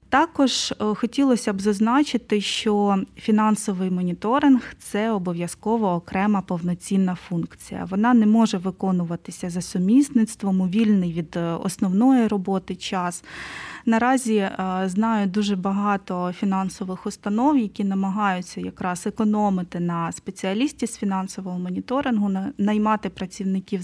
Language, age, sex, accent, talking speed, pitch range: Ukrainian, 20-39, female, native, 105 wpm, 190-225 Hz